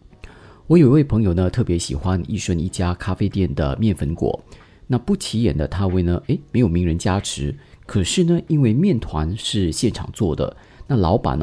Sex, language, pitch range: male, Chinese, 85-115 Hz